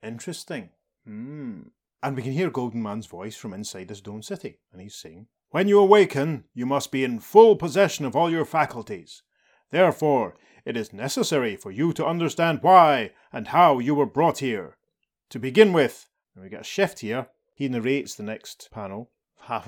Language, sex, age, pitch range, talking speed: English, male, 30-49, 110-170 Hz, 185 wpm